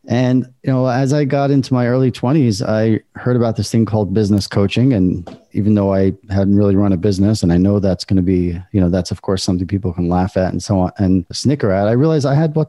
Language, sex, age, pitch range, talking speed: English, male, 40-59, 100-125 Hz, 260 wpm